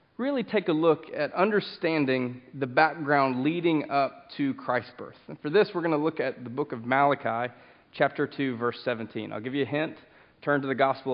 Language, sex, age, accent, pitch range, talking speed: English, male, 30-49, American, 135-175 Hz, 205 wpm